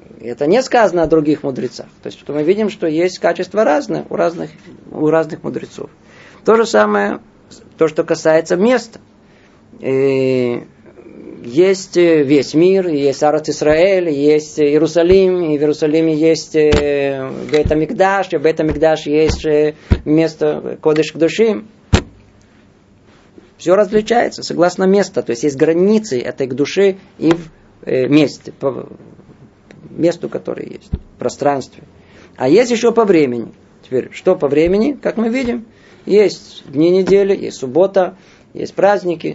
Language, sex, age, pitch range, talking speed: Russian, male, 20-39, 150-195 Hz, 130 wpm